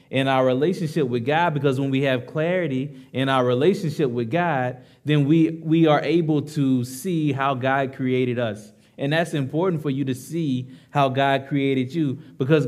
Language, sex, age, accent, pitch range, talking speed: English, male, 20-39, American, 125-155 Hz, 180 wpm